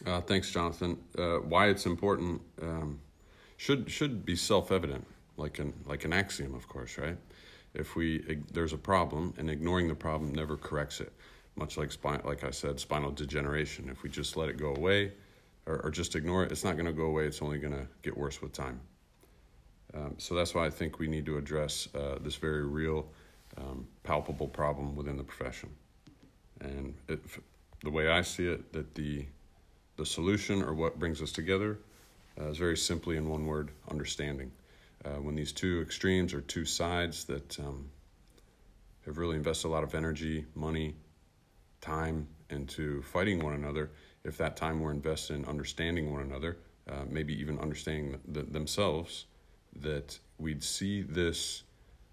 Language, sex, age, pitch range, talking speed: English, male, 50-69, 75-85 Hz, 175 wpm